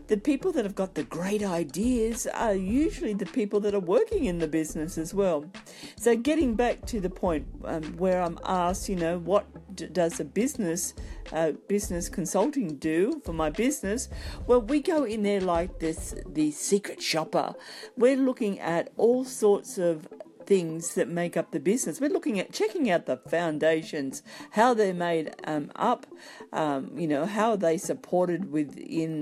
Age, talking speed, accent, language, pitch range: 50-69, 175 wpm, Australian, English, 165-230 Hz